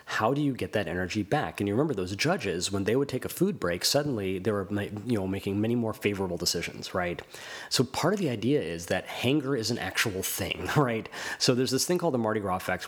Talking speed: 240 wpm